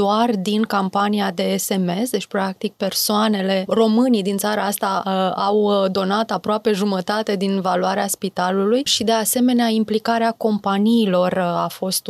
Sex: female